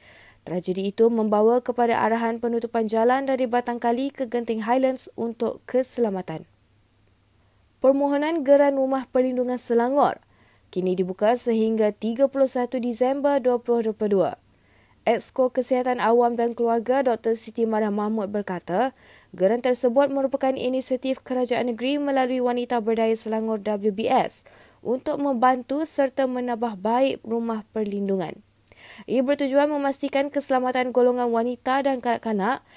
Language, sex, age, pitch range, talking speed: Malay, female, 20-39, 210-260 Hz, 115 wpm